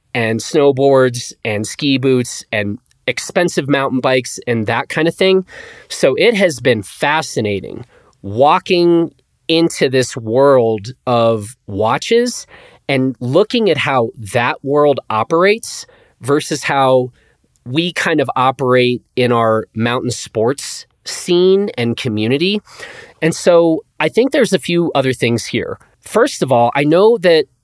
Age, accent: 30-49, American